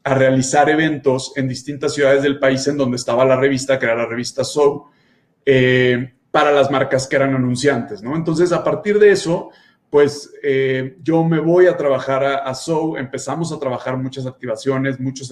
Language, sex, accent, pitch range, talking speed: Spanish, male, Mexican, 130-145 Hz, 185 wpm